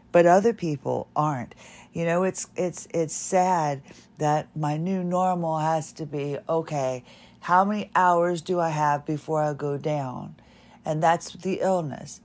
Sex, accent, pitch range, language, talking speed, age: female, American, 155-190 Hz, English, 155 wpm, 50-69